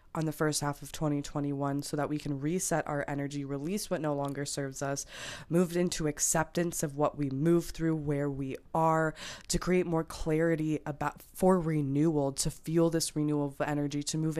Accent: American